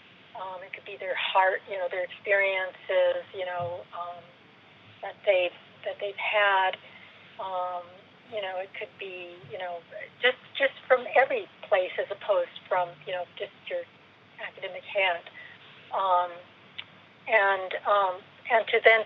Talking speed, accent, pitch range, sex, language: 145 wpm, American, 180-230 Hz, female, English